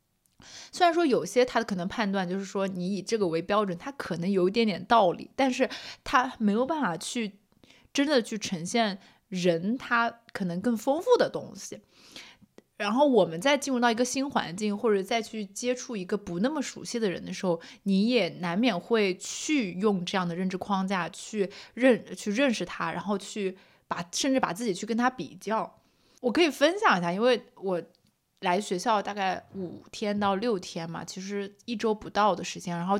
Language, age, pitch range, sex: Chinese, 20-39, 185-235 Hz, female